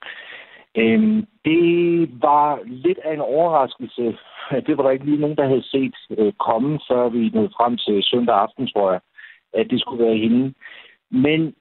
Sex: male